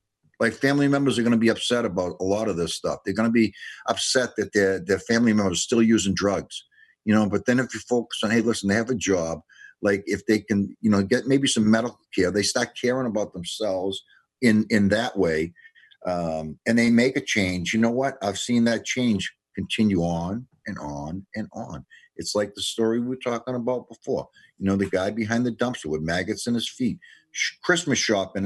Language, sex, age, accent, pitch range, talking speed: English, male, 50-69, American, 100-125 Hz, 220 wpm